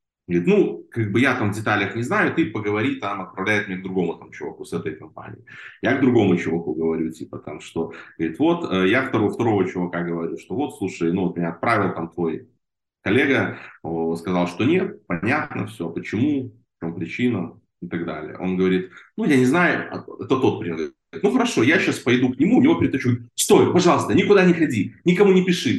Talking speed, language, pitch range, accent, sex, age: 200 wpm, Russian, 90-125 Hz, native, male, 30-49